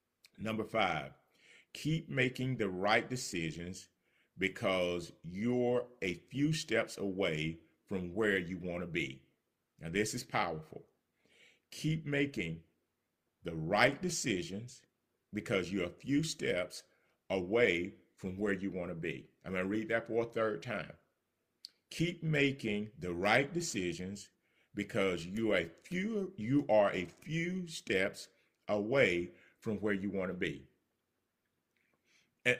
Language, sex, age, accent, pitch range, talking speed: English, male, 40-59, American, 95-155 Hz, 130 wpm